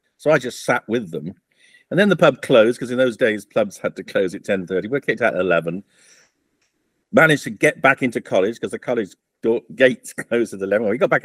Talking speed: 235 wpm